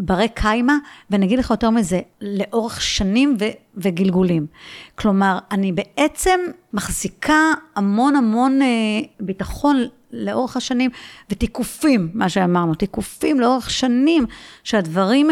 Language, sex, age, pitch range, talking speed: Hebrew, female, 50-69, 190-275 Hz, 105 wpm